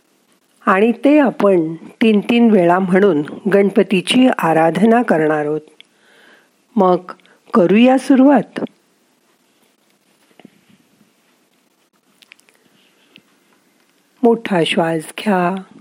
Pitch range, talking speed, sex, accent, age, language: 185-225 Hz, 65 wpm, female, native, 50-69, Marathi